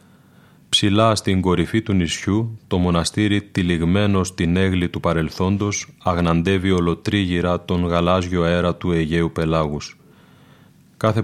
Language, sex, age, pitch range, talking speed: Greek, male, 30-49, 85-100 Hz, 110 wpm